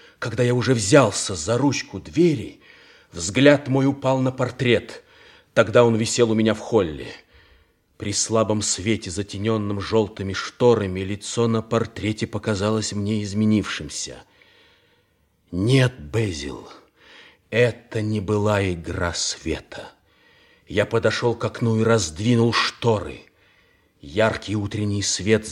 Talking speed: 115 wpm